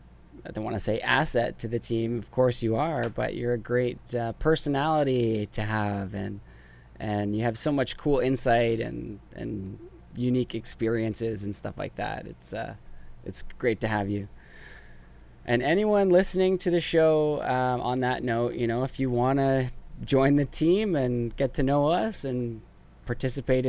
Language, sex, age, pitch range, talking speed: English, male, 20-39, 100-135 Hz, 175 wpm